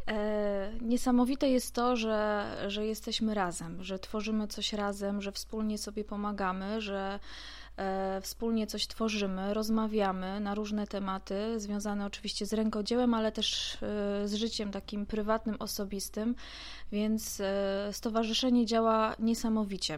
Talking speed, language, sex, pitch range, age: 115 wpm, Polish, female, 200-225 Hz, 20-39